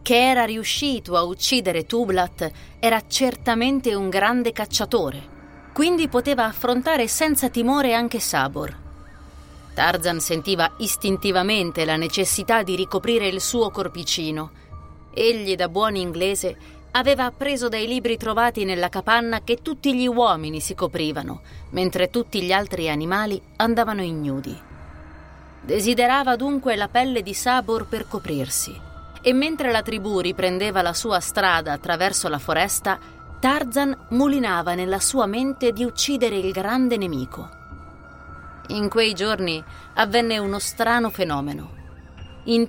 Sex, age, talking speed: female, 30-49, 125 wpm